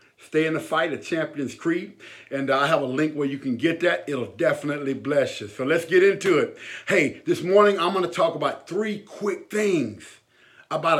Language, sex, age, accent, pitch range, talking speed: English, male, 50-69, American, 135-195 Hz, 205 wpm